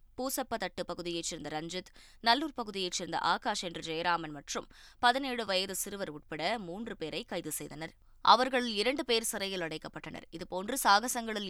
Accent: native